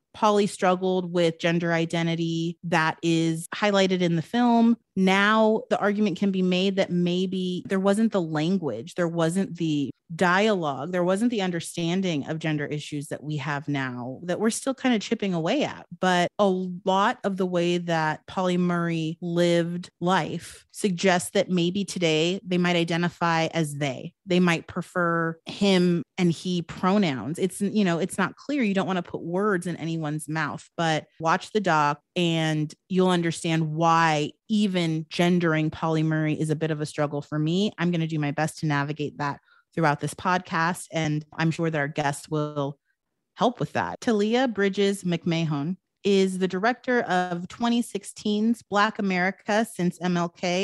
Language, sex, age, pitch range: English, female, 30-49, 160-195 Hz